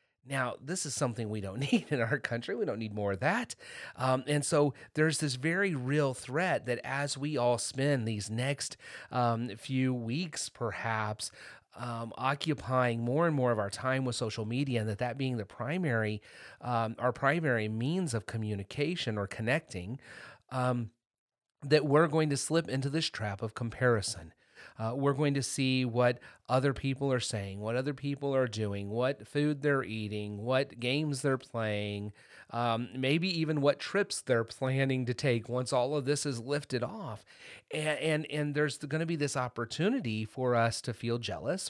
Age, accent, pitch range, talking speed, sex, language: 30-49, American, 115-140 Hz, 180 wpm, male, English